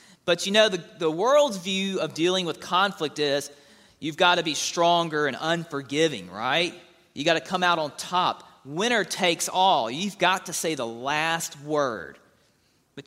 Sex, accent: male, American